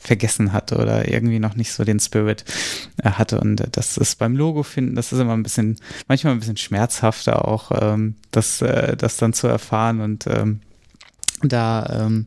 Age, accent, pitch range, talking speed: 20-39, German, 110-125 Hz, 170 wpm